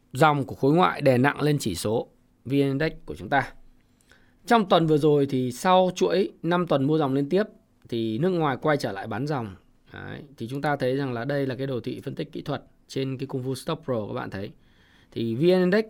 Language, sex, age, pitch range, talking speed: Vietnamese, male, 20-39, 125-165 Hz, 230 wpm